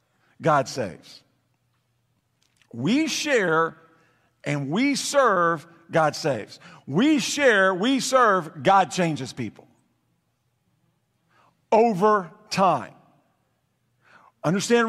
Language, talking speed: English, 75 wpm